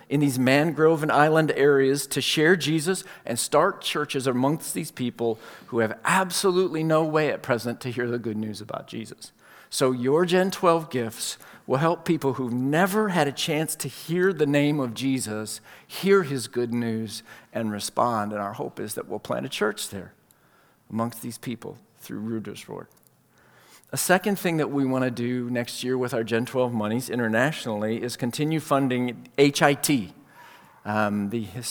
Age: 50-69